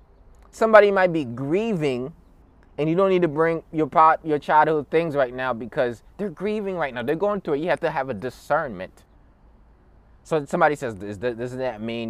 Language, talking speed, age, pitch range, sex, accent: English, 200 wpm, 20-39, 125-200 Hz, male, American